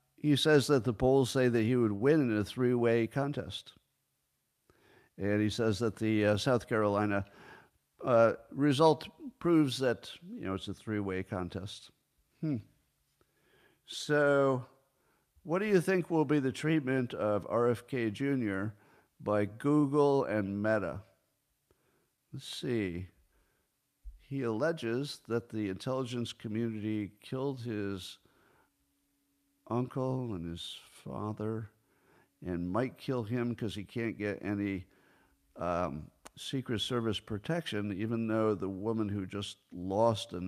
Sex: male